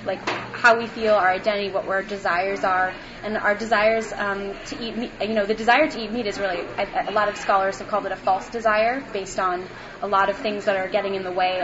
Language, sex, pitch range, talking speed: English, female, 195-220 Hz, 255 wpm